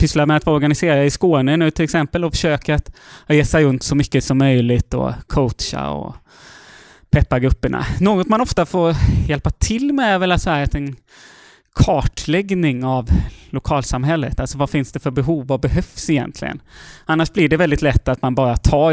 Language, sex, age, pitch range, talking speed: Swedish, male, 20-39, 125-160 Hz, 185 wpm